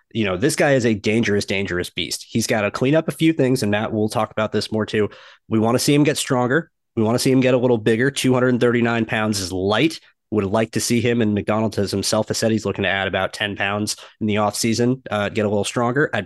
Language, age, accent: English, 30-49, American